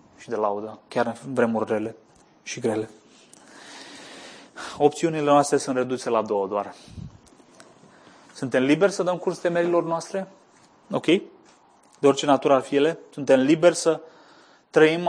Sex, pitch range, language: male, 115-145 Hz, Romanian